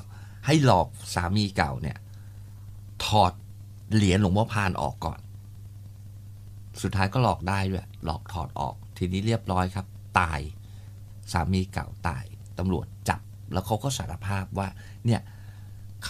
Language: Thai